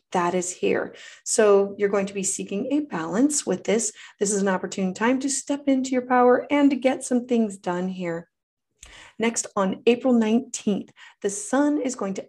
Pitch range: 185-235 Hz